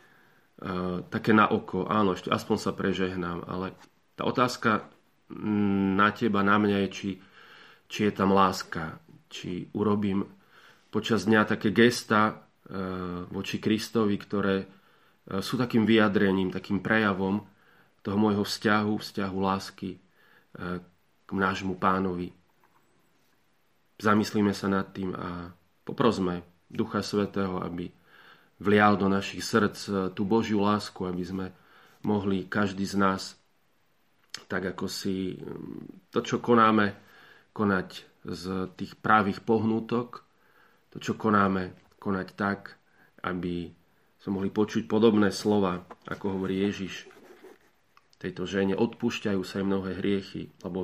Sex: male